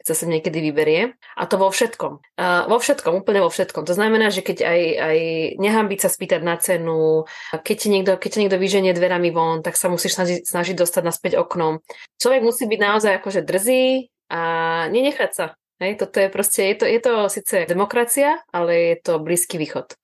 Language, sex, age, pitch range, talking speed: Czech, female, 20-39, 165-195 Hz, 200 wpm